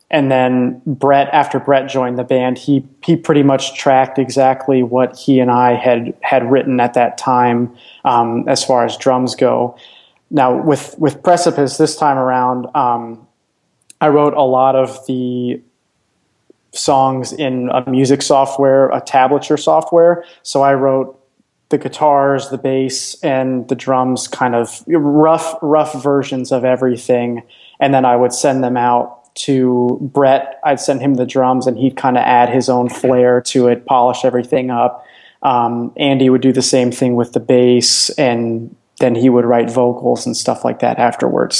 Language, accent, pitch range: English, American, 125-140 Hz